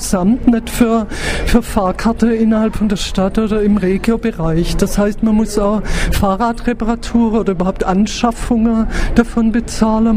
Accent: German